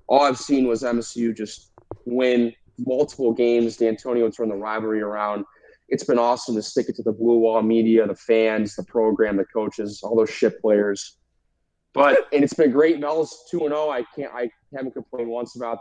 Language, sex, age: English, male, 20-39